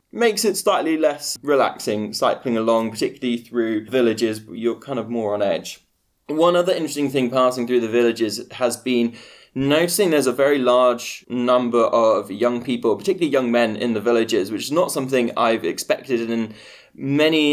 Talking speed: 170 wpm